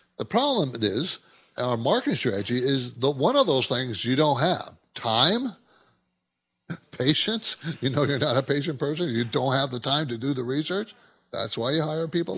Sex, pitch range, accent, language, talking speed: male, 130-200 Hz, American, English, 185 wpm